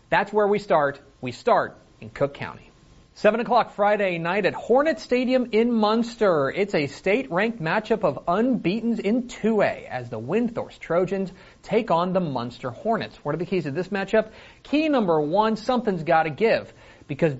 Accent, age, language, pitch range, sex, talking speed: American, 30-49, English, 125-175 Hz, male, 175 wpm